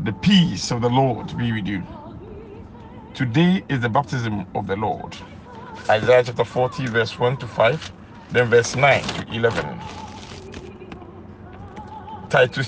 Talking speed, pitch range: 135 wpm, 105-150 Hz